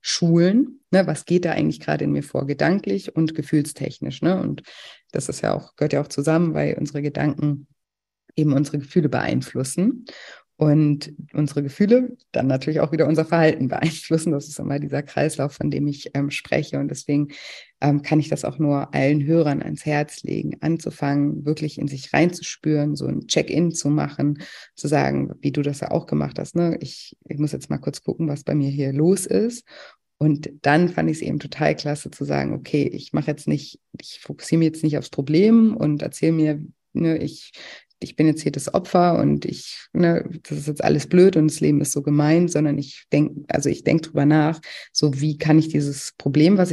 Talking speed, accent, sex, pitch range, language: 200 wpm, German, female, 145-165 Hz, German